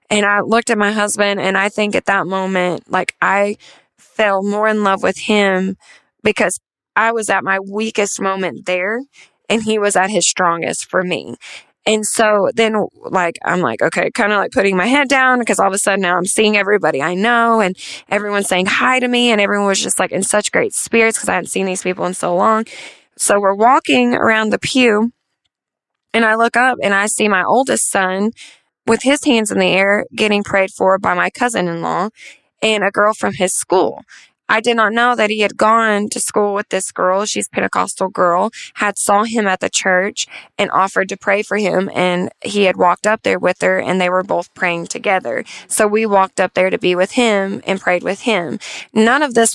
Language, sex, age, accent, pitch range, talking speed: English, female, 20-39, American, 185-220 Hz, 215 wpm